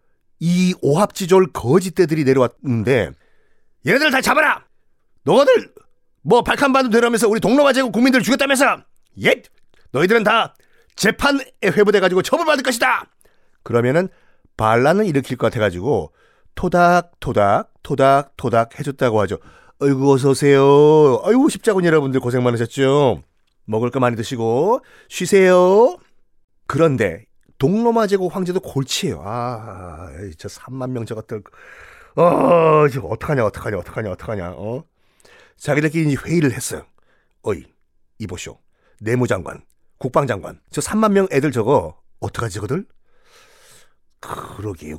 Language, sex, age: Korean, male, 40-59